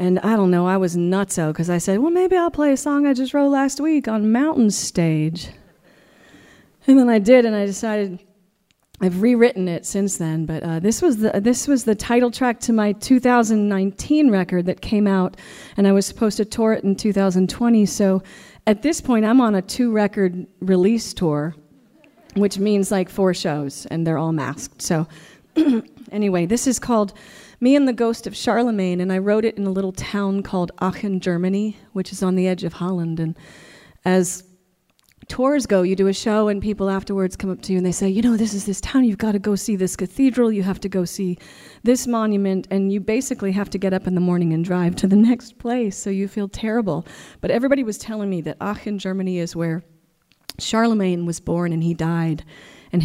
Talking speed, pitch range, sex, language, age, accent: 205 wpm, 180-225 Hz, female, English, 30-49, American